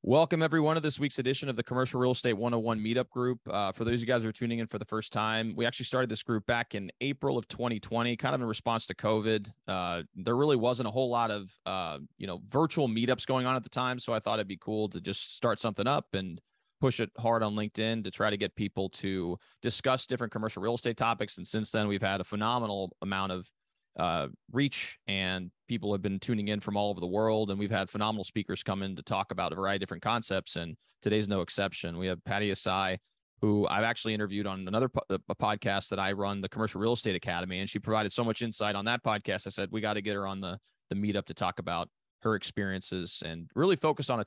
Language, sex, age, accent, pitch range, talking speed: English, male, 30-49, American, 100-120 Hz, 250 wpm